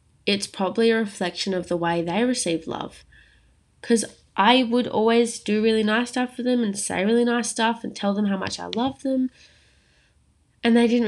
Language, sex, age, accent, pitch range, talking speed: English, female, 20-39, Australian, 170-230 Hz, 195 wpm